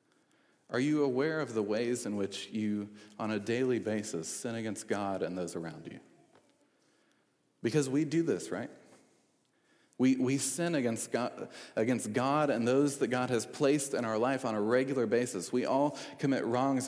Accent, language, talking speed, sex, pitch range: American, English, 175 wpm, male, 115-135 Hz